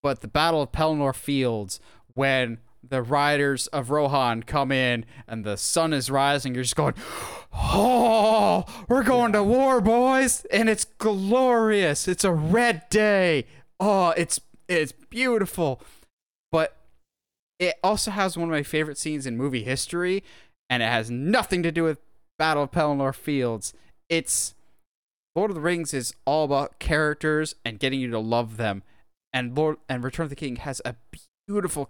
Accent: American